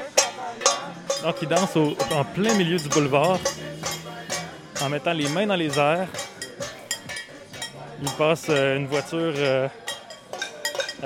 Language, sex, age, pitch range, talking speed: French, male, 20-39, 145-185 Hz, 115 wpm